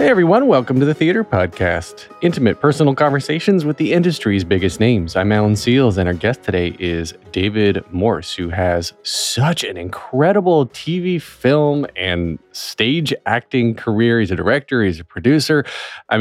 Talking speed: 160 wpm